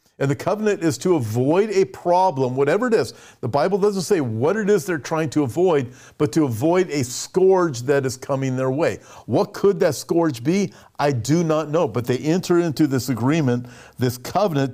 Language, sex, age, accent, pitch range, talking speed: English, male, 50-69, American, 130-180 Hz, 200 wpm